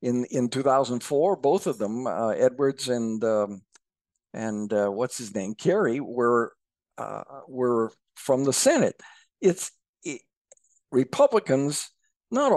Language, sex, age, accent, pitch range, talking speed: English, male, 60-79, American, 110-140 Hz, 125 wpm